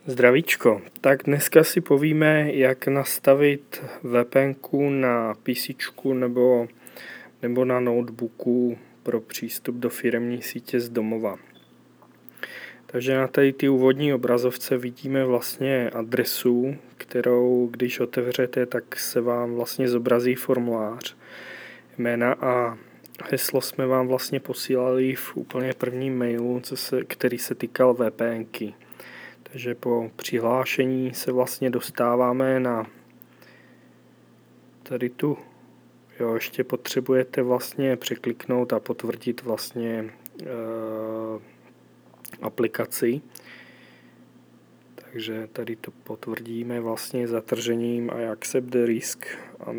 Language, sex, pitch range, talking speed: Czech, male, 120-130 Hz, 105 wpm